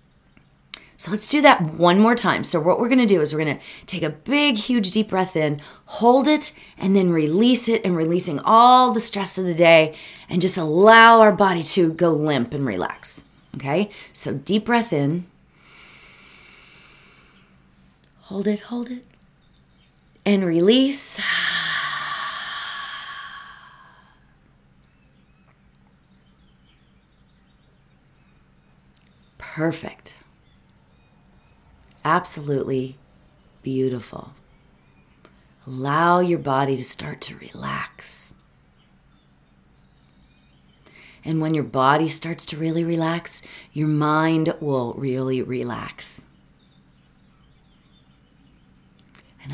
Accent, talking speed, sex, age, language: American, 100 wpm, female, 30-49, English